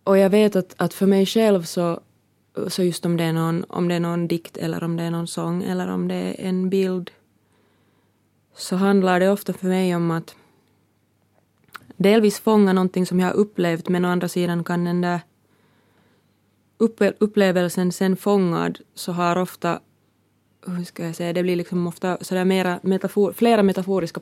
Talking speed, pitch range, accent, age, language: 185 wpm, 170-185 Hz, native, 20-39, Finnish